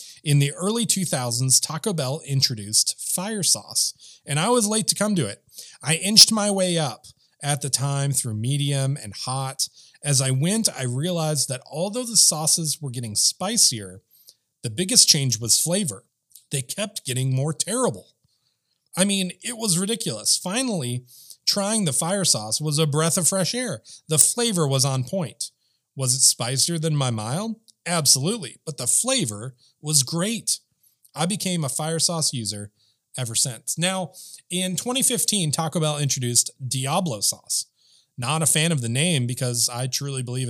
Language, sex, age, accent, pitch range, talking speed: English, male, 30-49, American, 130-185 Hz, 165 wpm